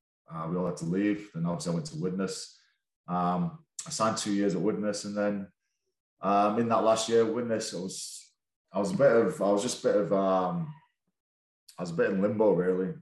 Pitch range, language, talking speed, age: 90-145 Hz, English, 225 wpm, 20-39